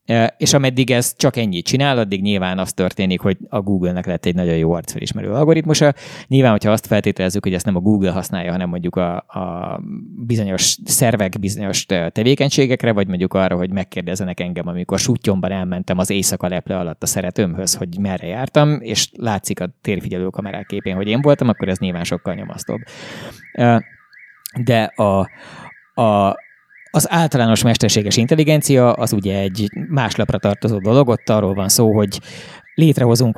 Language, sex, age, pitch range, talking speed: Hungarian, male, 20-39, 100-130 Hz, 160 wpm